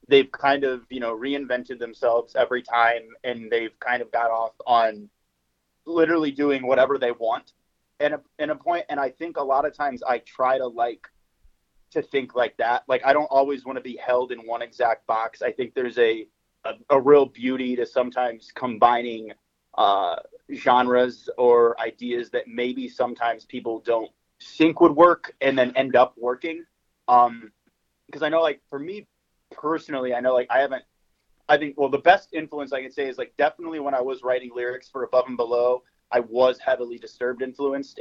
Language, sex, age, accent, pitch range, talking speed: English, male, 30-49, American, 115-145 Hz, 190 wpm